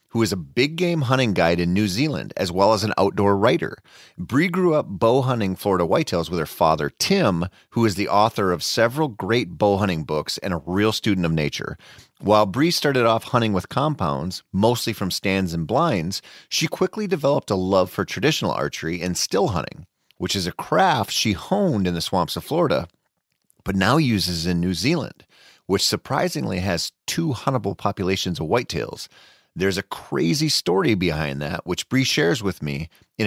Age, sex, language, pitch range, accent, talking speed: 30-49, male, English, 95-130 Hz, American, 185 wpm